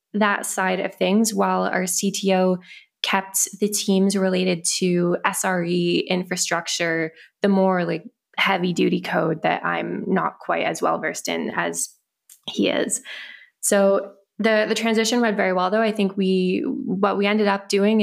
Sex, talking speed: female, 155 wpm